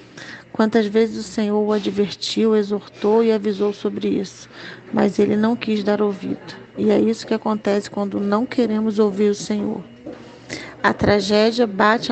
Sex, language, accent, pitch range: female, Portuguese, Brazilian, 205-225 Hz